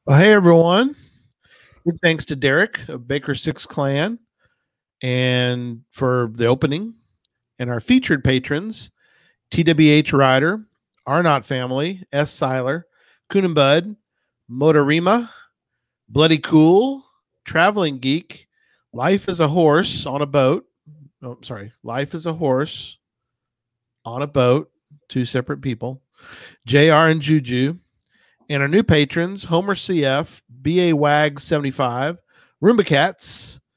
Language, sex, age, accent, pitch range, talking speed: English, male, 40-59, American, 130-170 Hz, 110 wpm